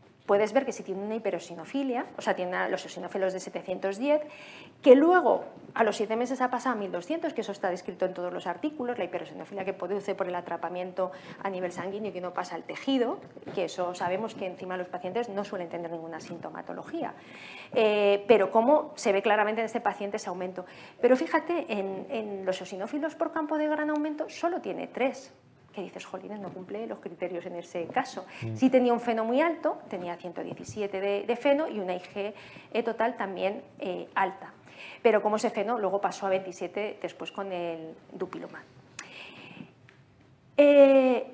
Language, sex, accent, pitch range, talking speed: Spanish, female, Spanish, 185-255 Hz, 185 wpm